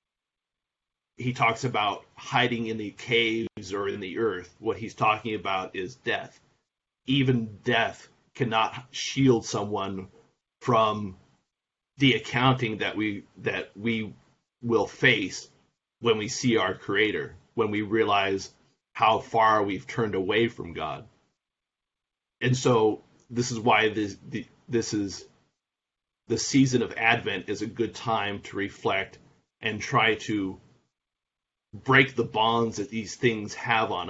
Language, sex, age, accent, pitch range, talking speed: English, male, 30-49, American, 105-125 Hz, 130 wpm